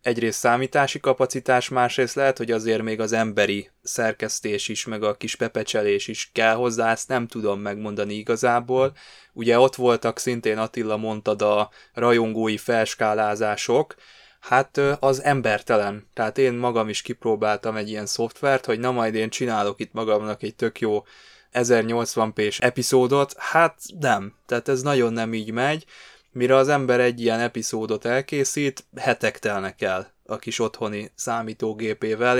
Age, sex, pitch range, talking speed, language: 20-39, male, 105-125 Hz, 145 wpm, Hungarian